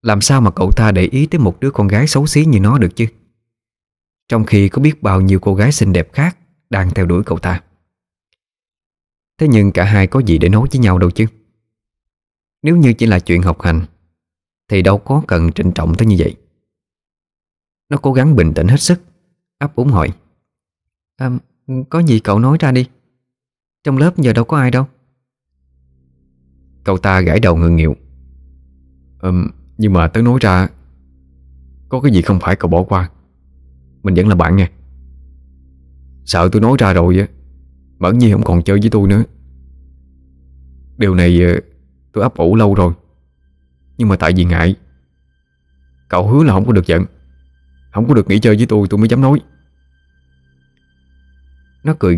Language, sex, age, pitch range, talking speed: Vietnamese, male, 20-39, 65-110 Hz, 180 wpm